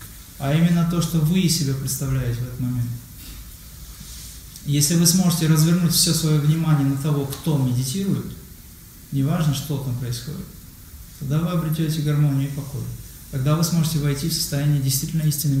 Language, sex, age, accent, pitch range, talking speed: Russian, male, 20-39, native, 125-155 Hz, 150 wpm